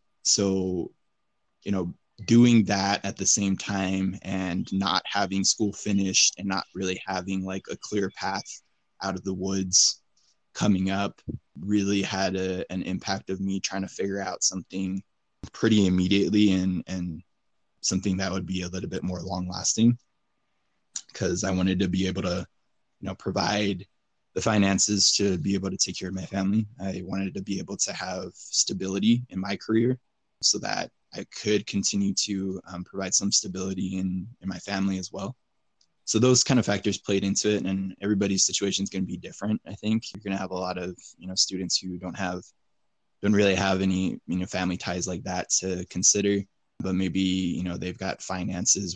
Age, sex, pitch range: 20-39, male, 95-100 Hz